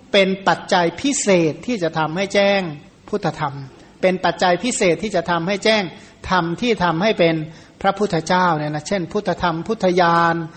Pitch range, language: 165-210 Hz, Thai